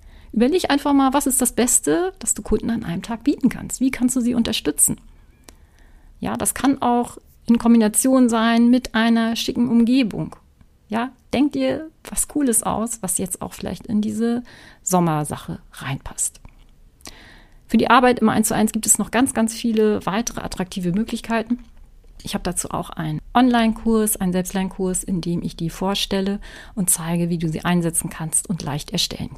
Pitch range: 190-245 Hz